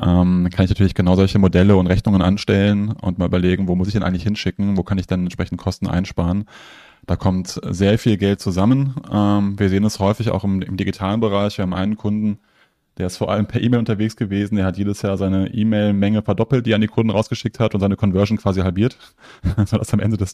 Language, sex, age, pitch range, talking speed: German, male, 20-39, 95-110 Hz, 225 wpm